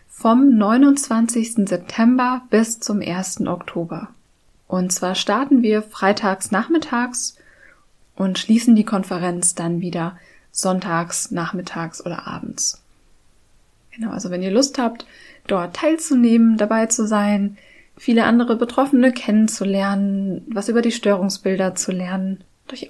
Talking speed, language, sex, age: 120 wpm, German, female, 20-39